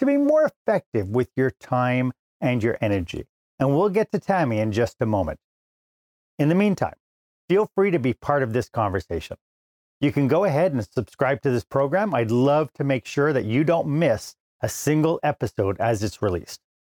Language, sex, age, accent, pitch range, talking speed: English, male, 40-59, American, 100-140 Hz, 190 wpm